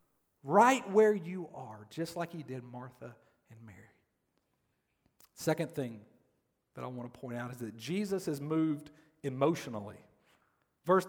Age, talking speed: 40-59, 140 wpm